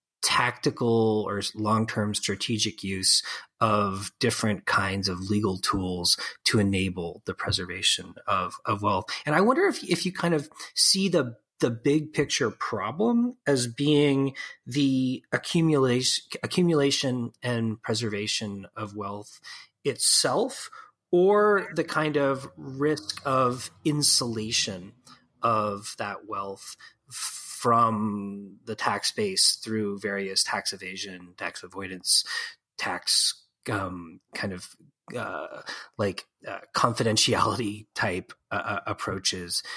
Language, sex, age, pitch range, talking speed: English, male, 30-49, 100-145 Hz, 115 wpm